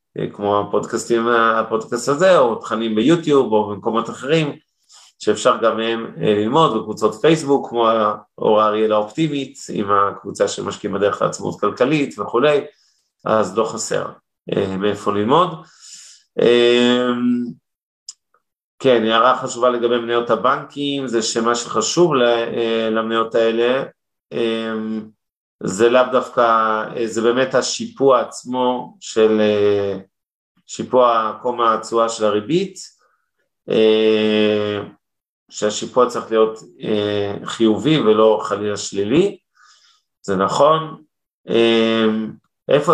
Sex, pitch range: male, 110-125 Hz